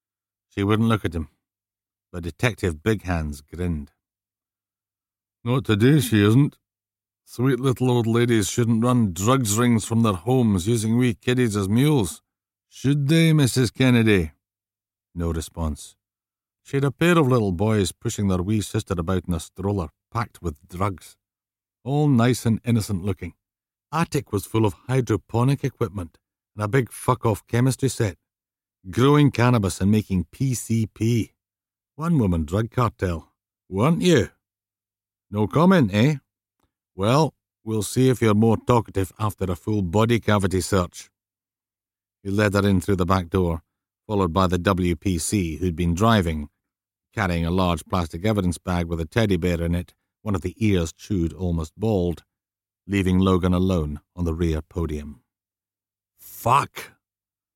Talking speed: 145 wpm